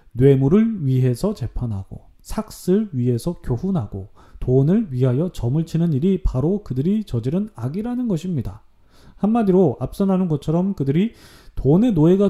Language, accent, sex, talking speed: English, Korean, male, 110 wpm